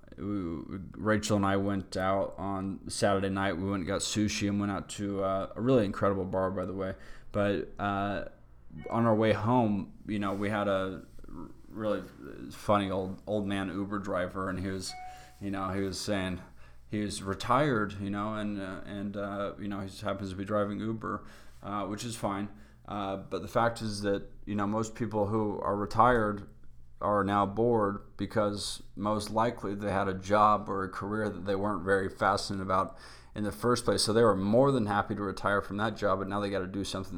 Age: 20-39